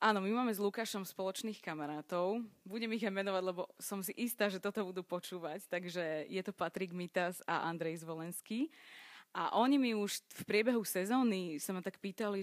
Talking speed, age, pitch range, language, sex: 185 wpm, 20-39, 170-200 Hz, Slovak, female